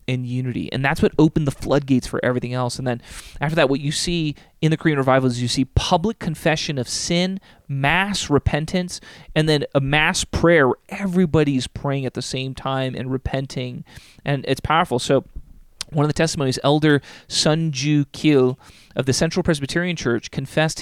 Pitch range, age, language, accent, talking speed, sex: 125-155 Hz, 30-49, English, American, 180 wpm, male